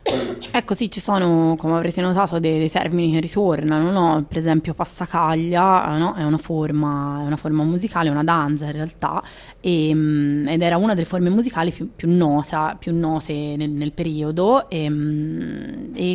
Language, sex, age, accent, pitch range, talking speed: Italian, female, 20-39, native, 150-170 Hz, 165 wpm